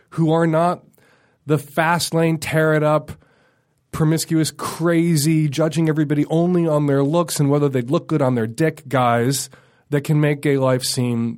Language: English